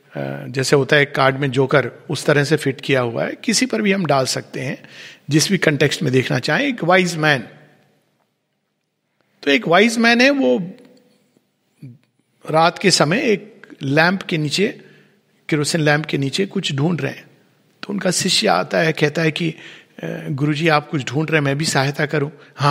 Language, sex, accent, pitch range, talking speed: Hindi, male, native, 155-240 Hz, 180 wpm